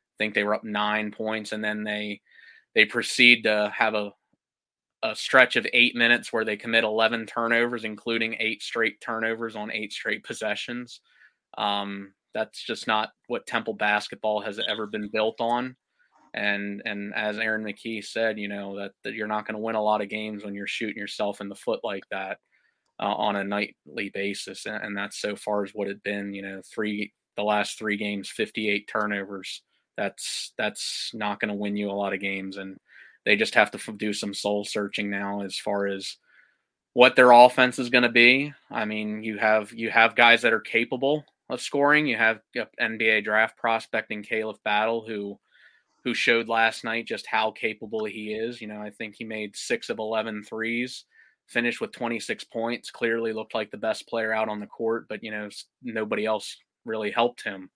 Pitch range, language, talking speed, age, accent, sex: 105-115 Hz, English, 195 wpm, 20-39, American, male